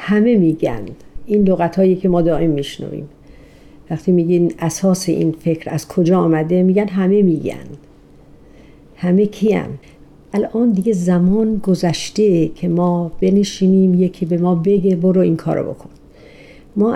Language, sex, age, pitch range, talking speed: Persian, female, 50-69, 165-205 Hz, 135 wpm